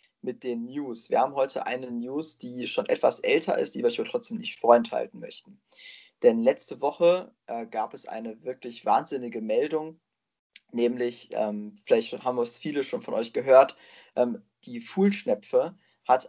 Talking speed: 160 wpm